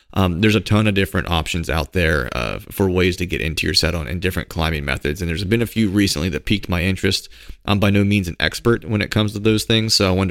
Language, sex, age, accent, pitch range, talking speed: English, male, 30-49, American, 90-105 Hz, 275 wpm